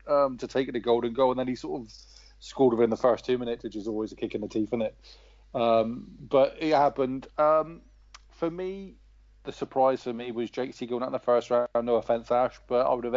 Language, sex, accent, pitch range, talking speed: English, male, British, 115-130 Hz, 250 wpm